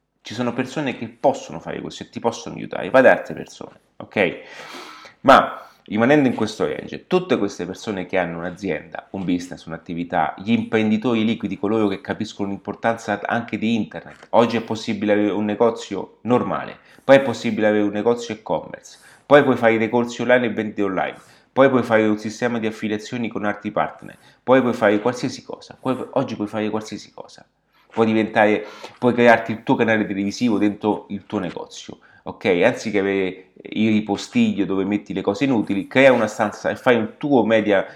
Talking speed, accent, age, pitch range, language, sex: 175 wpm, native, 30-49, 100-120 Hz, Italian, male